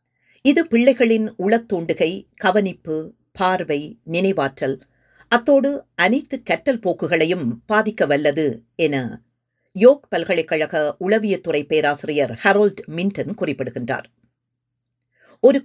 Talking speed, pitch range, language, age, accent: 80 wpm, 135-210 Hz, Tamil, 50-69, native